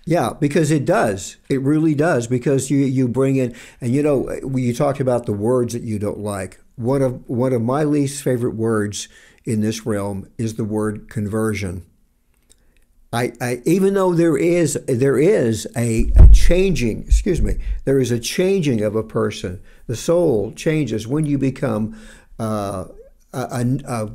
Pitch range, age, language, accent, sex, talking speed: 110-140 Hz, 60-79, English, American, male, 170 wpm